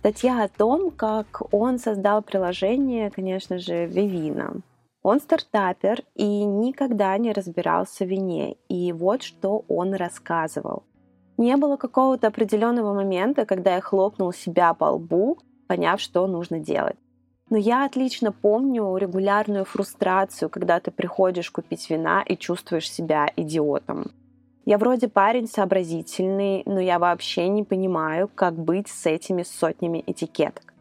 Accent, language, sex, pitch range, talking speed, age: native, Russian, female, 170-215 Hz, 130 wpm, 20-39